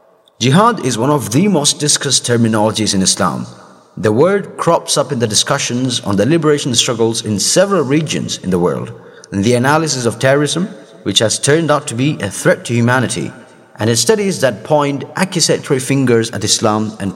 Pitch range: 110-150 Hz